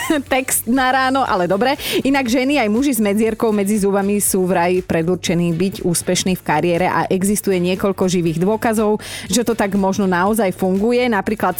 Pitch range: 185-250 Hz